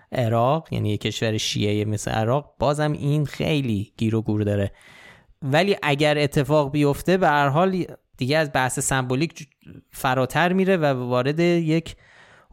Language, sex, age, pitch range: Persian, male, 20-39, 120-160 Hz